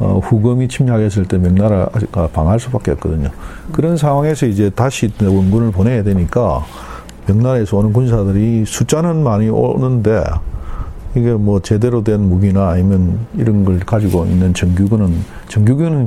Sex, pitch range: male, 90-135 Hz